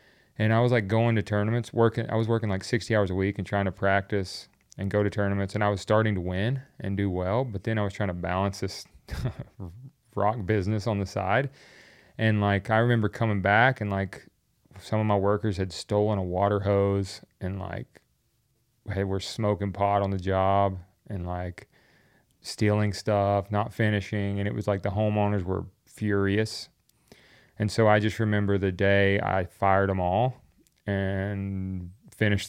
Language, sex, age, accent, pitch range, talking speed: English, male, 30-49, American, 95-110 Hz, 185 wpm